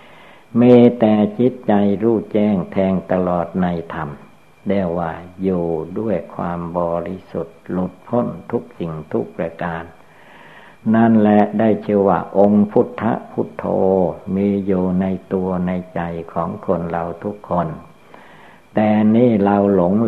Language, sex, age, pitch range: Thai, male, 60-79, 85-100 Hz